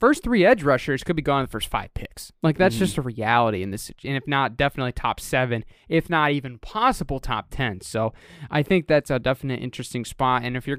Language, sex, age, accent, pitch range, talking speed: English, male, 20-39, American, 125-155 Hz, 230 wpm